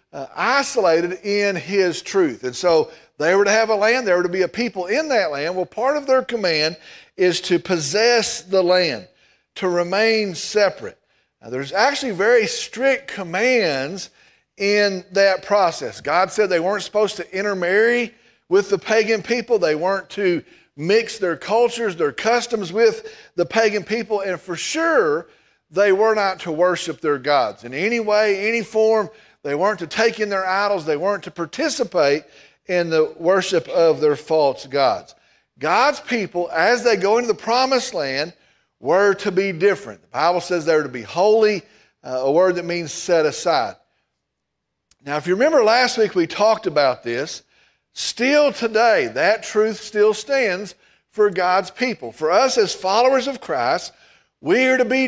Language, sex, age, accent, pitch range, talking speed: English, male, 40-59, American, 175-235 Hz, 170 wpm